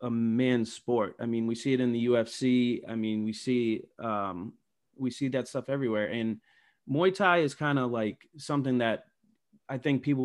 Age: 30-49